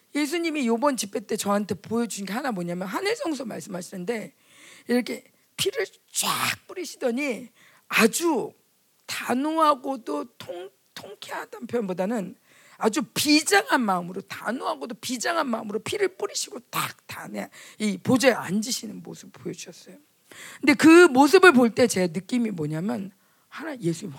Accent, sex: native, female